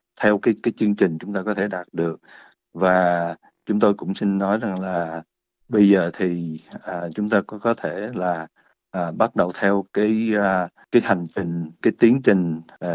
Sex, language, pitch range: male, Vietnamese, 85-100 Hz